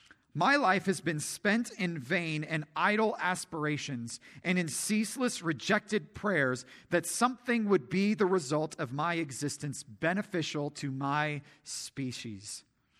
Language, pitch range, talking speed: English, 155-220 Hz, 130 wpm